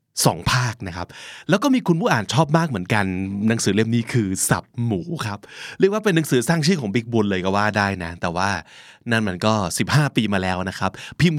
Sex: male